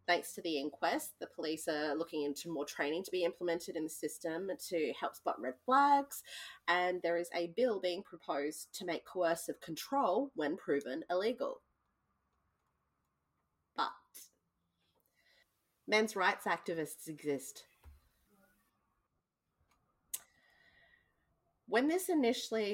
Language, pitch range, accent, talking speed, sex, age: English, 160-215 Hz, Australian, 115 wpm, female, 30-49